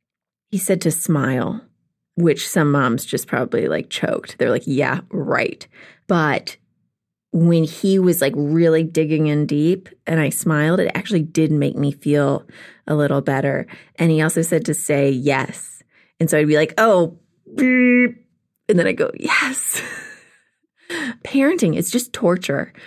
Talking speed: 150 wpm